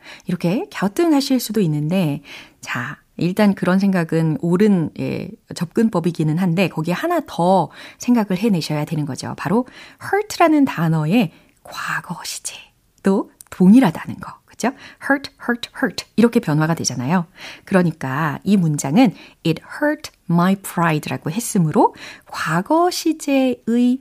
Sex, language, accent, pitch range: female, Korean, native, 165-265 Hz